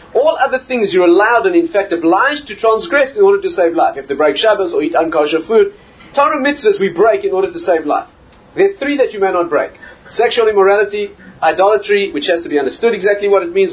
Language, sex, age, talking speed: English, male, 30-49, 235 wpm